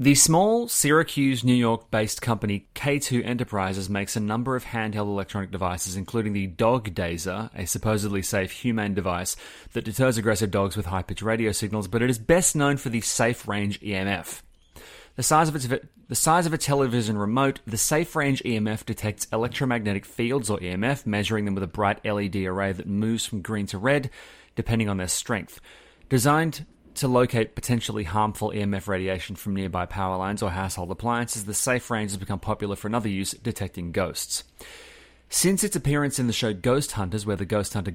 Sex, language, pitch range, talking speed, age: male, English, 100-120 Hz, 180 wpm, 30-49